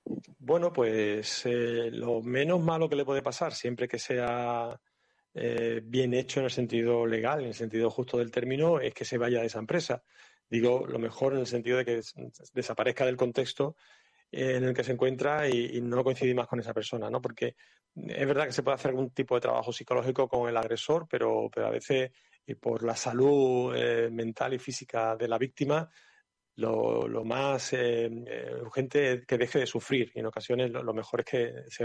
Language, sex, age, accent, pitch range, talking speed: Spanish, male, 40-59, Spanish, 115-135 Hz, 200 wpm